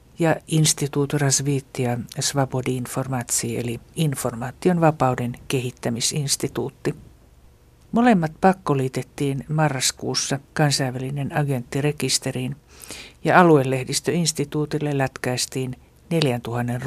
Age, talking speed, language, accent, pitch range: 60-79, 55 wpm, Finnish, native, 125-155 Hz